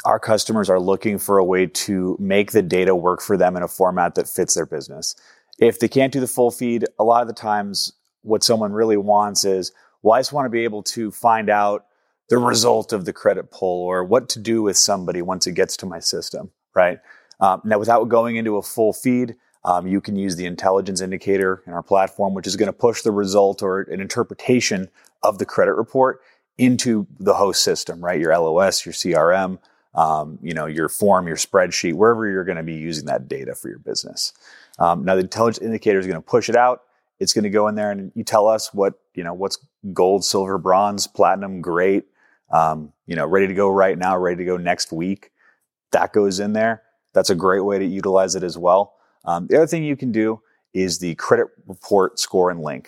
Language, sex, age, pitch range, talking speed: English, male, 30-49, 95-110 Hz, 220 wpm